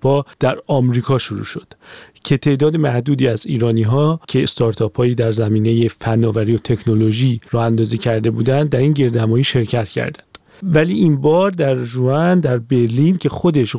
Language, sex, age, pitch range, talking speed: Persian, male, 40-59, 115-150 Hz, 155 wpm